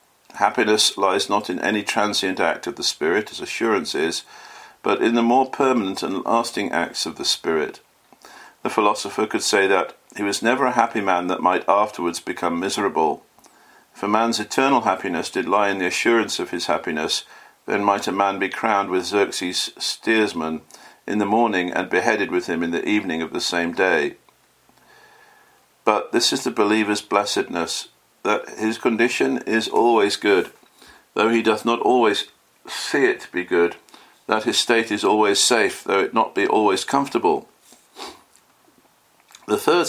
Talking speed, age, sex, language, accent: 165 wpm, 50-69, male, English, British